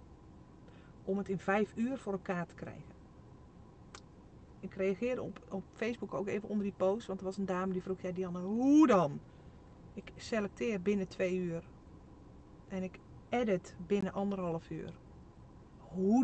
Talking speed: 155 wpm